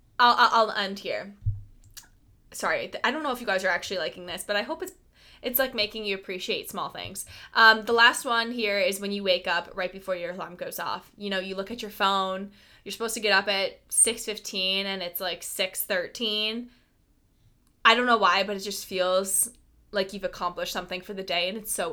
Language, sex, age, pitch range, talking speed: English, female, 20-39, 190-240 Hz, 220 wpm